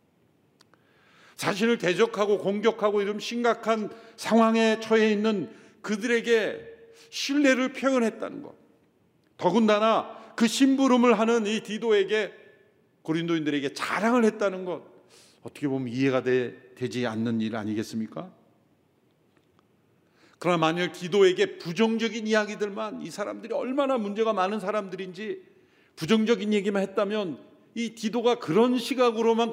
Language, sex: Korean, male